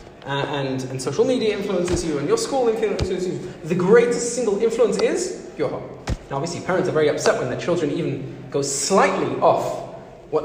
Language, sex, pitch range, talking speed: English, male, 140-210 Hz, 190 wpm